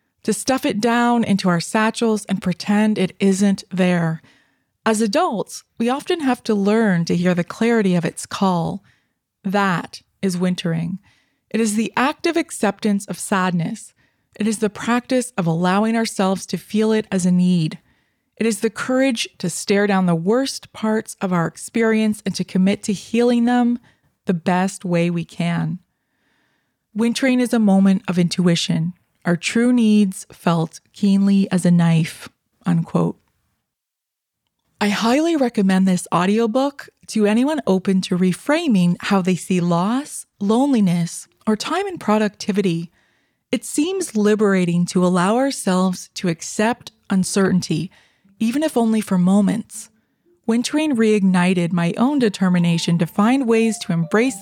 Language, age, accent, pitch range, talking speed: English, 20-39, American, 180-230 Hz, 145 wpm